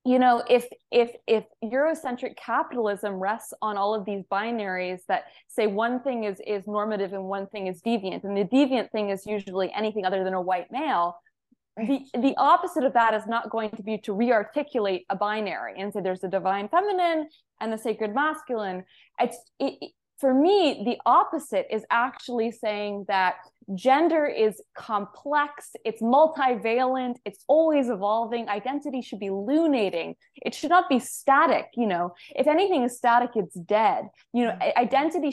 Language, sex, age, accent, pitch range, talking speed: English, female, 20-39, American, 200-260 Hz, 170 wpm